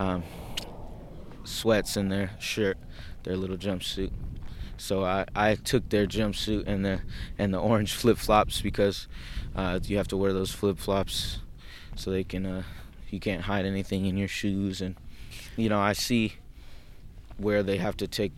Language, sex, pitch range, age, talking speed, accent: English, male, 95-105 Hz, 20-39, 160 wpm, American